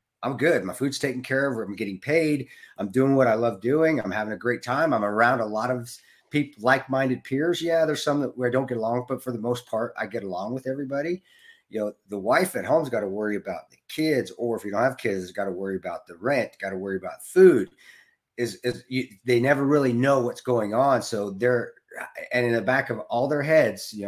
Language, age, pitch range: English, 40-59, 100-130 Hz